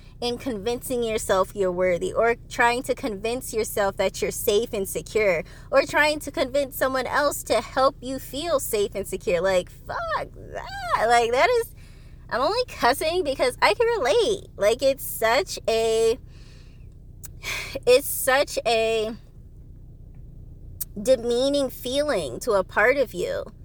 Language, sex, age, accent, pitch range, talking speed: English, female, 20-39, American, 195-290 Hz, 140 wpm